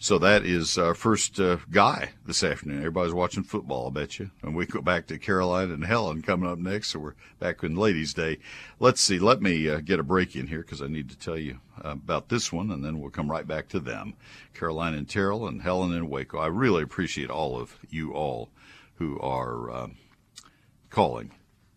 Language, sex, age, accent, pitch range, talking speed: English, male, 60-79, American, 80-100 Hz, 215 wpm